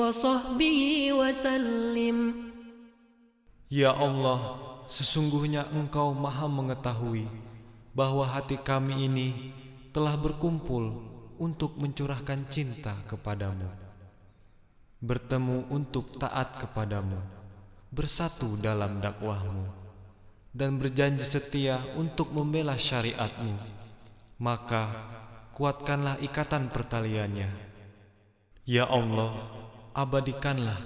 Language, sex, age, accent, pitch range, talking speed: Indonesian, male, 20-39, native, 105-140 Hz, 70 wpm